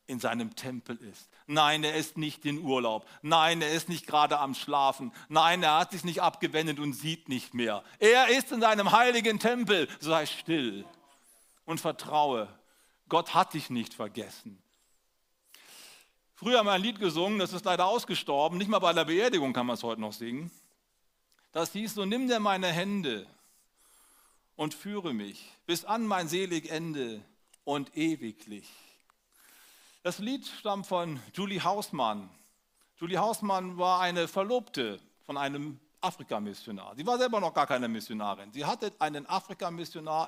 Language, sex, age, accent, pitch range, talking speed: German, male, 40-59, German, 145-200 Hz, 155 wpm